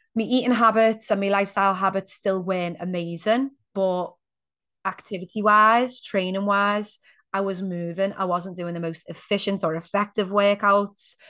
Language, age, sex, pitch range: English, 30-49, female, 175-205 Hz